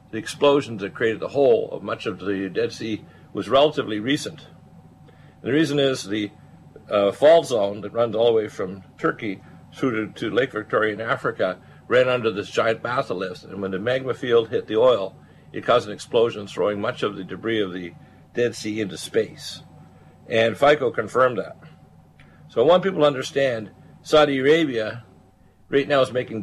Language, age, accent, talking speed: English, 60-79, American, 185 wpm